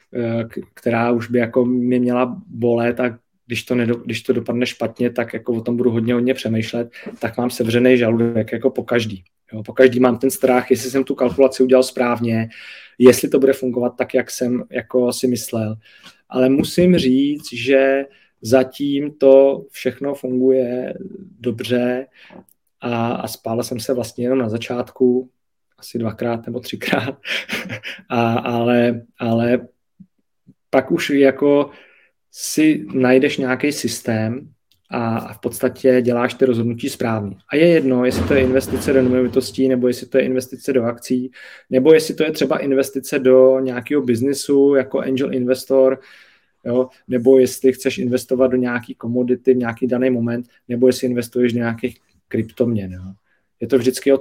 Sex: male